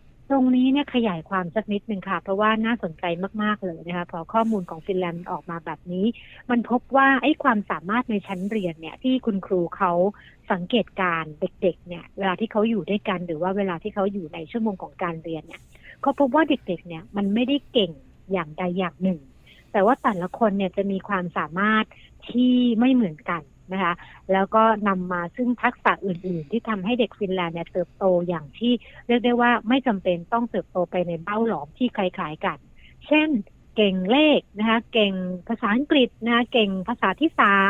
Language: Thai